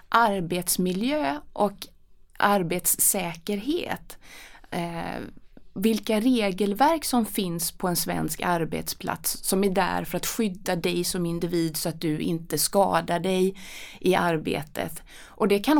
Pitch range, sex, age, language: 170-225 Hz, female, 20-39, Swedish